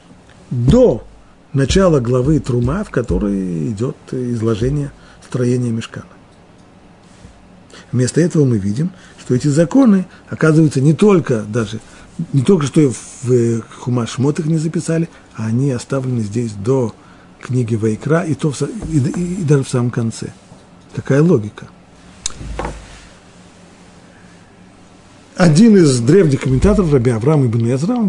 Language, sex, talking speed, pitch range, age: Russian, male, 120 wpm, 115-170 Hz, 40-59